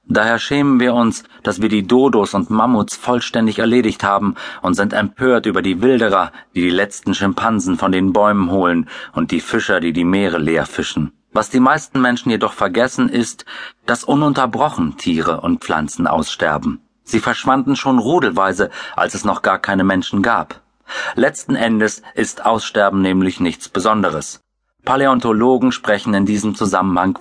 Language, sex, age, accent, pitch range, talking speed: German, male, 40-59, German, 100-130 Hz, 155 wpm